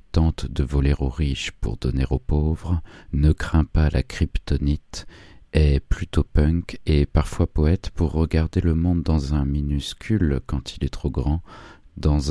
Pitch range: 70-85 Hz